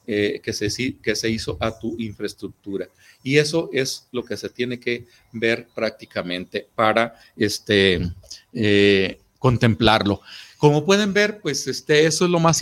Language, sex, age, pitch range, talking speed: Spanish, male, 50-69, 110-135 Hz, 150 wpm